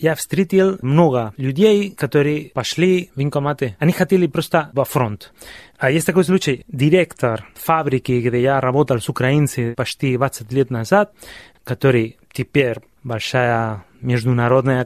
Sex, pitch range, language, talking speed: male, 120-155 Hz, Russian, 130 wpm